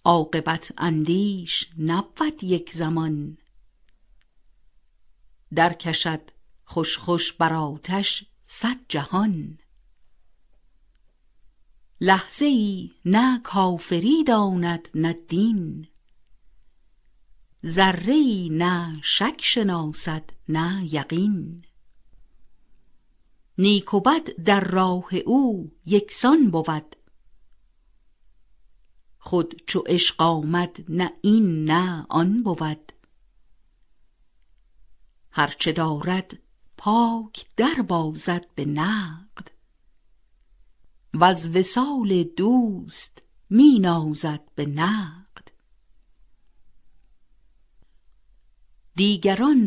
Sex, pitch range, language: female, 140-195 Hz, Persian